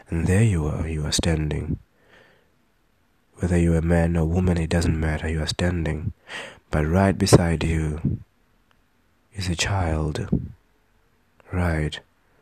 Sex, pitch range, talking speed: male, 80-95 Hz, 135 wpm